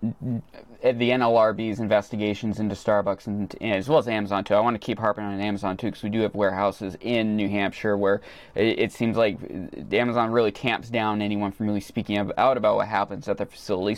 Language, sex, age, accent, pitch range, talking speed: English, male, 20-39, American, 105-125 Hz, 210 wpm